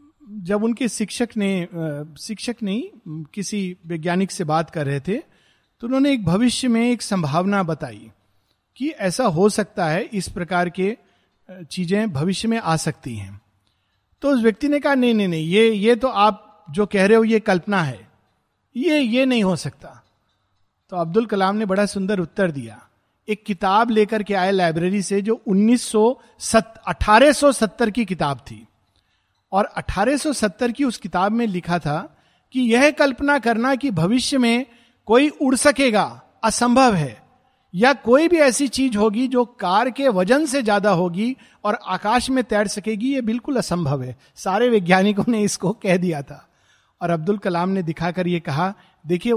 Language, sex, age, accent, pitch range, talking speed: Hindi, male, 50-69, native, 175-235 Hz, 165 wpm